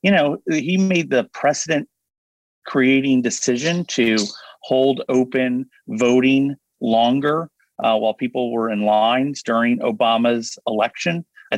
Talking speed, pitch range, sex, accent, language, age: 120 wpm, 115-145 Hz, male, American, English, 30-49